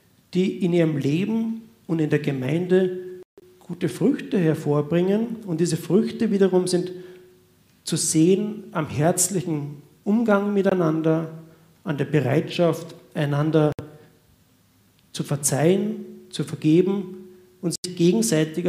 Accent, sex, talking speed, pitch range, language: German, male, 105 wpm, 150-185 Hz, German